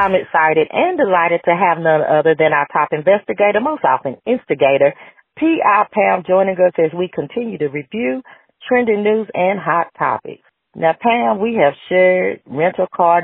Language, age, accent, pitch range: English, 40-59, American, 155-210 Hz